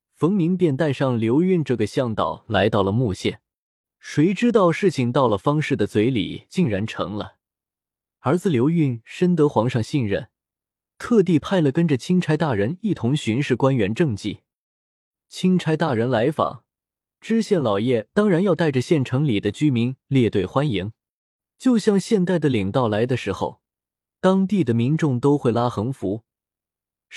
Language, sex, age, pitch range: Chinese, male, 20-39, 115-165 Hz